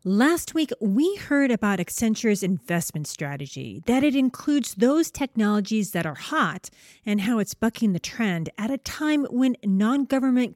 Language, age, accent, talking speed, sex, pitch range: English, 40-59, American, 155 wpm, female, 175-260 Hz